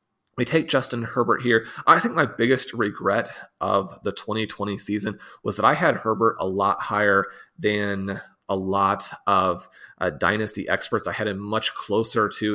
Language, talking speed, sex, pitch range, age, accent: English, 165 wpm, male, 100-115 Hz, 30-49, American